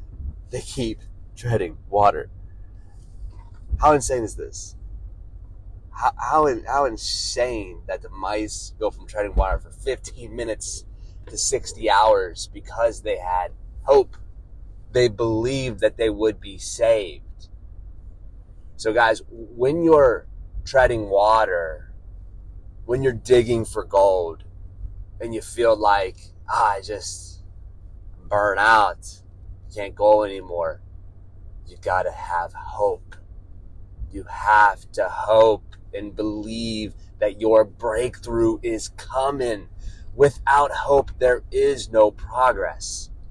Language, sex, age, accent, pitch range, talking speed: English, male, 20-39, American, 90-110 Hz, 115 wpm